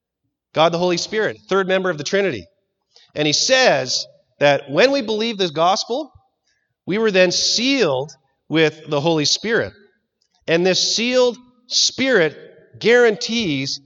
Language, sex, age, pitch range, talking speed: English, male, 40-59, 135-185 Hz, 135 wpm